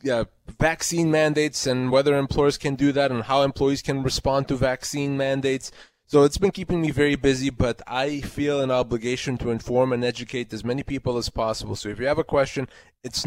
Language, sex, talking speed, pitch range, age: English, male, 205 wpm, 125-155 Hz, 20-39